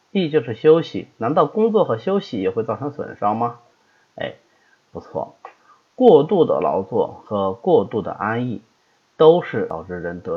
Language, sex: Chinese, male